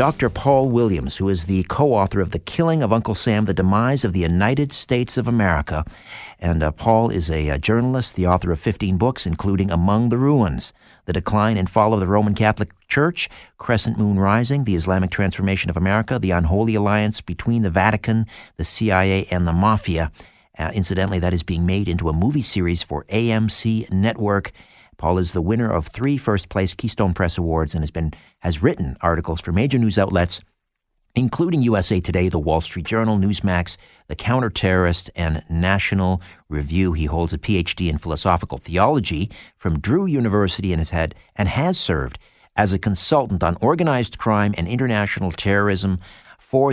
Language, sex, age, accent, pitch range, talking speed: English, male, 50-69, American, 85-110 Hz, 175 wpm